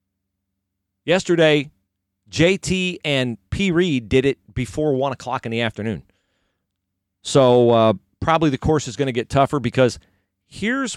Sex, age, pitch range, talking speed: male, 40-59, 95-140 Hz, 135 wpm